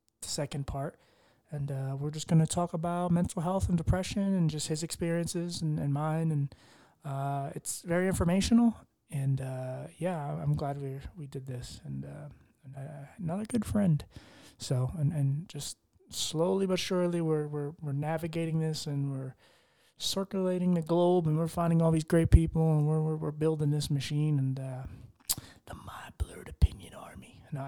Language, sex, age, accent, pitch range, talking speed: English, male, 30-49, American, 135-175 Hz, 170 wpm